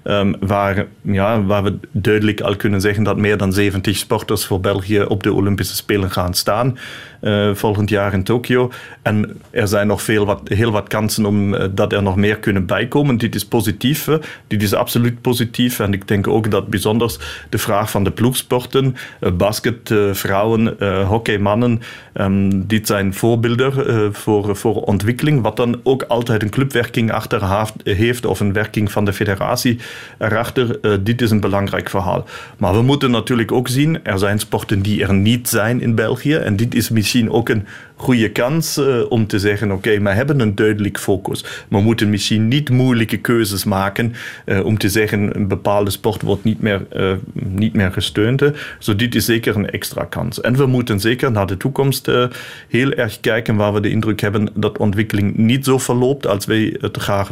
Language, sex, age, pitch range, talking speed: Dutch, male, 40-59, 100-120 Hz, 195 wpm